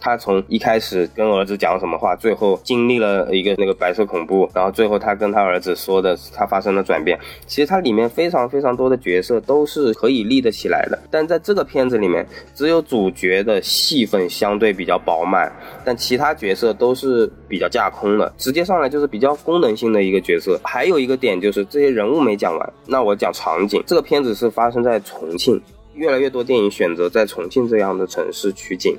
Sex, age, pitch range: male, 20-39, 105-150 Hz